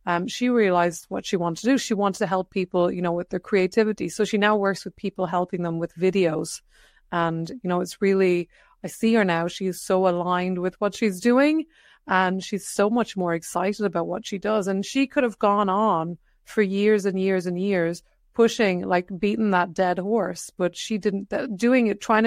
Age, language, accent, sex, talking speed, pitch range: 30-49, English, Irish, female, 215 wpm, 180-210 Hz